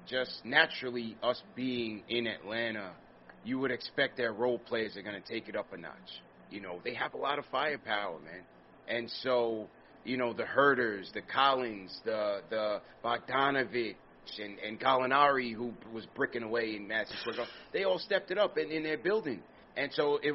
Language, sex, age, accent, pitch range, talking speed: English, male, 30-49, American, 115-140 Hz, 180 wpm